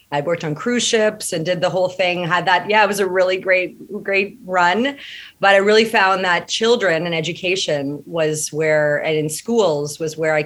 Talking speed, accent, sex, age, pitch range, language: 205 wpm, American, female, 30-49, 155-185 Hz, English